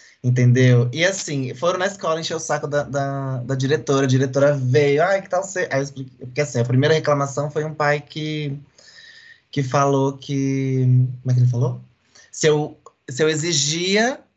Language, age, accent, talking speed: Portuguese, 20-39, Brazilian, 190 wpm